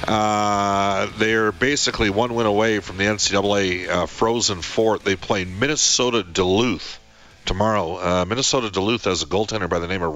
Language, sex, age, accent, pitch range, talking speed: English, male, 50-69, American, 85-115 Hz, 160 wpm